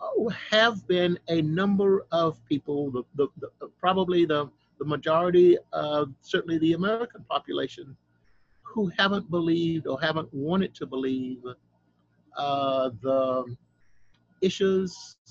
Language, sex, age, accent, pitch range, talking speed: English, male, 50-69, American, 125-175 Hz, 100 wpm